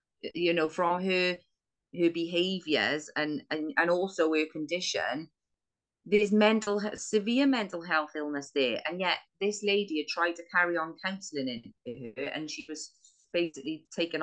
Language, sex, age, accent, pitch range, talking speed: English, female, 30-49, British, 150-195 Hz, 150 wpm